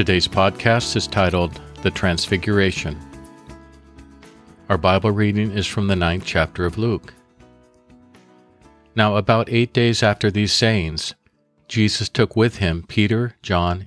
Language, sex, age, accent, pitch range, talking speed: English, male, 50-69, American, 85-110 Hz, 125 wpm